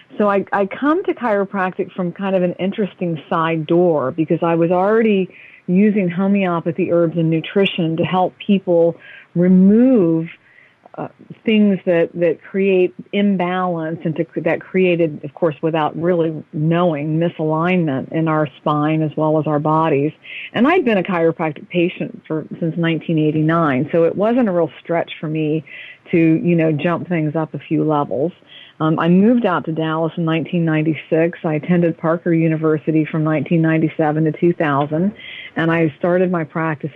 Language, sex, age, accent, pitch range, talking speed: English, female, 40-59, American, 160-185 Hz, 155 wpm